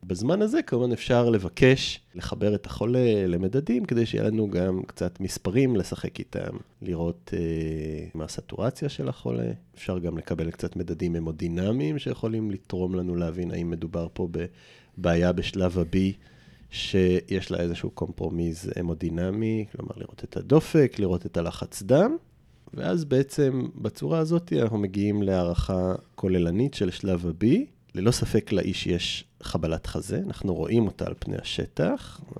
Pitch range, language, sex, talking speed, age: 85-115 Hz, Hebrew, male, 140 wpm, 30-49